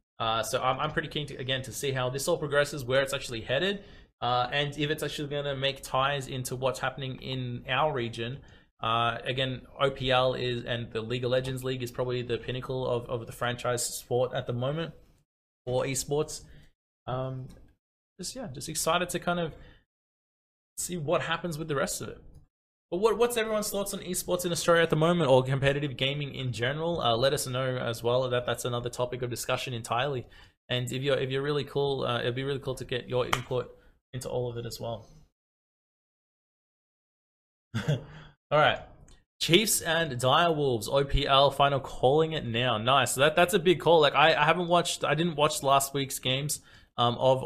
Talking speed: 195 wpm